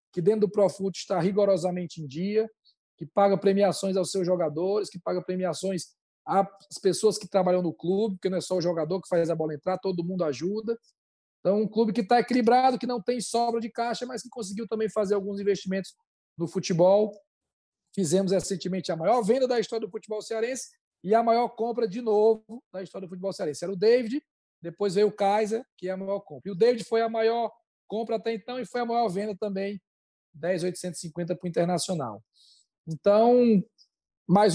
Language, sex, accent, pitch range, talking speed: Portuguese, male, Brazilian, 185-225 Hz, 195 wpm